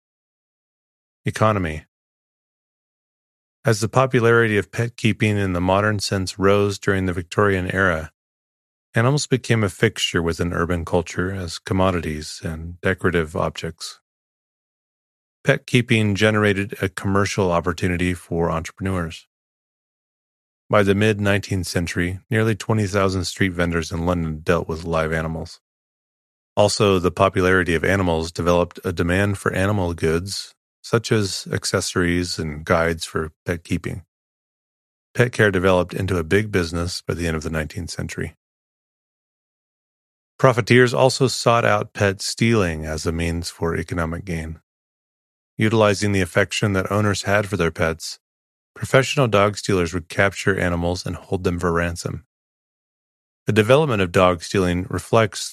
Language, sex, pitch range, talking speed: English, male, 85-105 Hz, 130 wpm